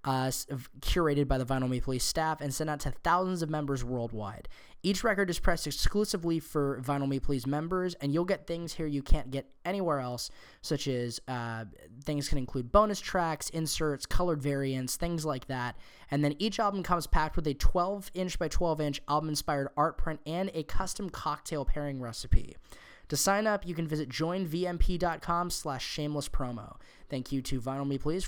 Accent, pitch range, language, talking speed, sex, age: American, 135-175 Hz, English, 190 wpm, male, 10-29